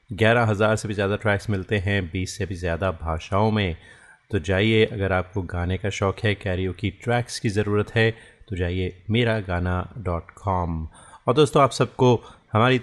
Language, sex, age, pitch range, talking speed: Hindi, male, 30-49, 95-115 Hz, 165 wpm